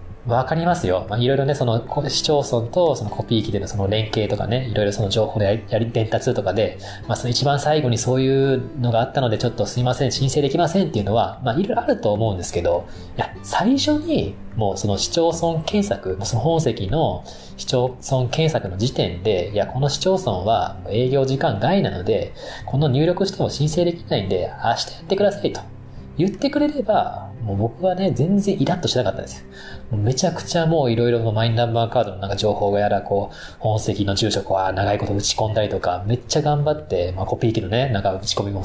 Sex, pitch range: male, 100-140 Hz